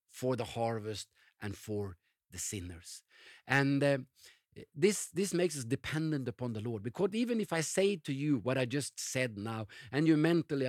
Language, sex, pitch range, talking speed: English, male, 120-170 Hz, 180 wpm